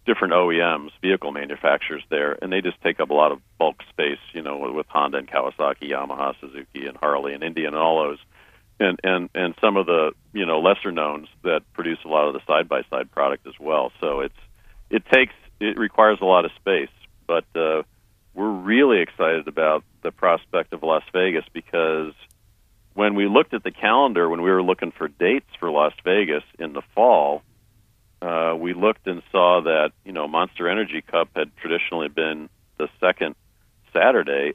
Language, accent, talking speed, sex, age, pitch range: English, American, 185 wpm, male, 50-69, 80-100 Hz